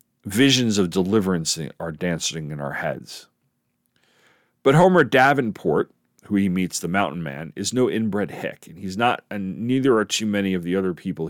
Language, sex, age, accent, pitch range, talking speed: English, male, 40-59, American, 85-120 Hz, 175 wpm